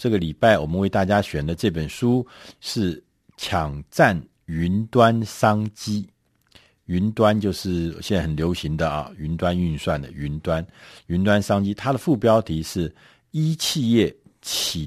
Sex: male